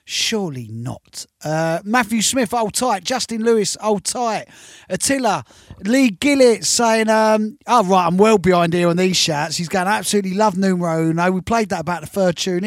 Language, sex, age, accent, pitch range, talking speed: English, male, 30-49, British, 165-215 Hz, 185 wpm